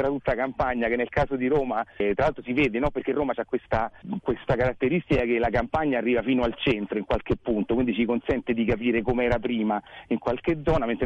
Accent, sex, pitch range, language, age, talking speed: native, male, 115-150 Hz, Italian, 40-59, 230 wpm